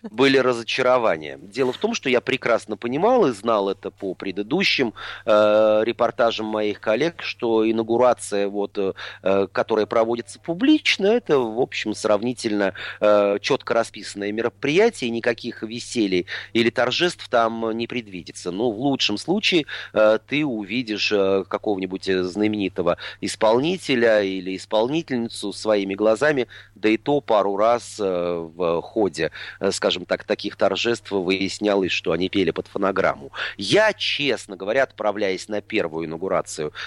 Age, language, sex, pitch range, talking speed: 30-49, Russian, male, 105-130 Hz, 130 wpm